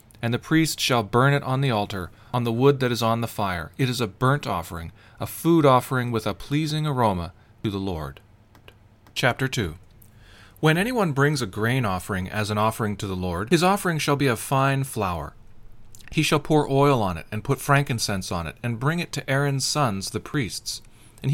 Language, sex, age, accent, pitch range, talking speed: English, male, 40-59, American, 110-145 Hz, 205 wpm